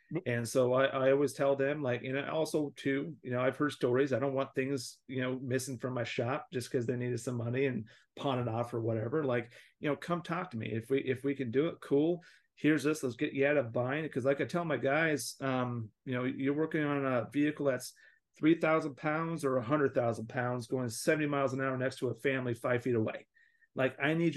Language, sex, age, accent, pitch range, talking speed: English, male, 40-59, American, 125-145 Hz, 245 wpm